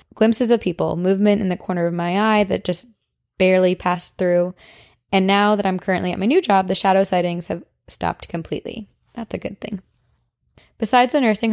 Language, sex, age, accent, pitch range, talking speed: English, female, 20-39, American, 170-200 Hz, 195 wpm